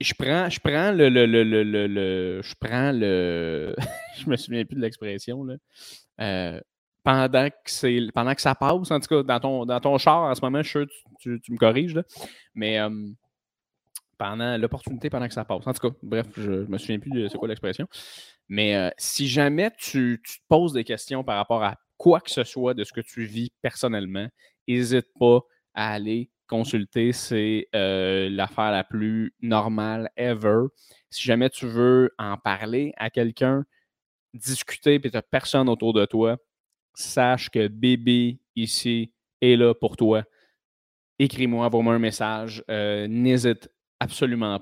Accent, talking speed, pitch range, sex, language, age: Canadian, 175 wpm, 110-130 Hz, male, French, 20-39